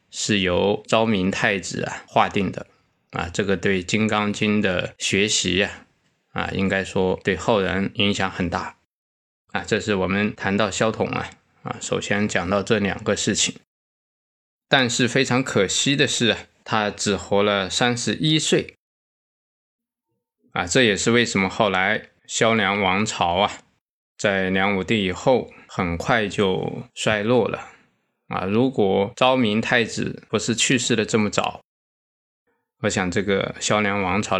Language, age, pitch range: Chinese, 20-39, 95-120 Hz